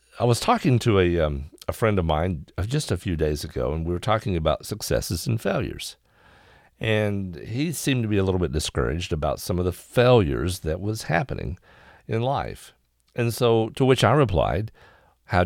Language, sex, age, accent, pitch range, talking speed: English, male, 50-69, American, 80-110 Hz, 190 wpm